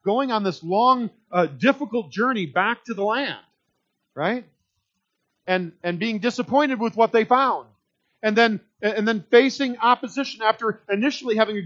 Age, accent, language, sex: 40-59, American, English, male